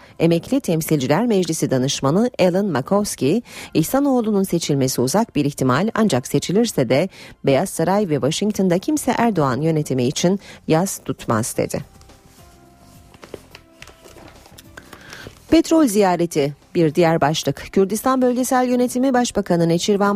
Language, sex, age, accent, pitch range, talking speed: Turkish, female, 40-59, native, 145-210 Hz, 105 wpm